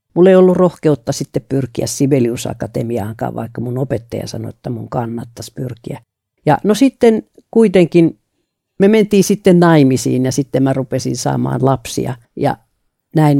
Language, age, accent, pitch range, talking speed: Finnish, 50-69, native, 125-160 Hz, 140 wpm